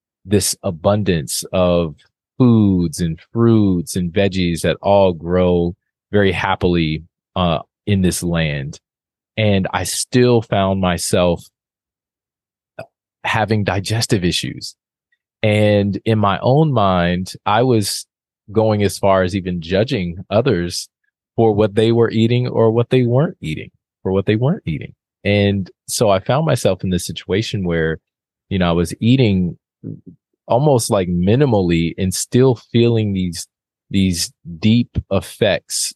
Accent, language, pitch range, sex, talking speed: American, English, 85-110 Hz, male, 130 wpm